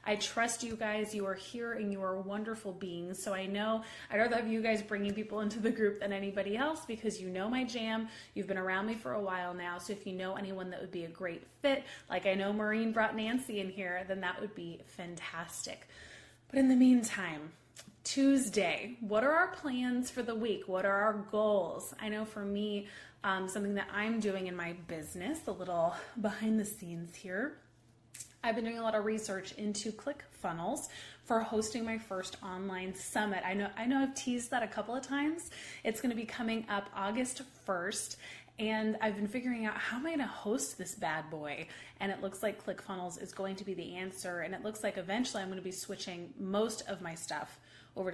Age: 20-39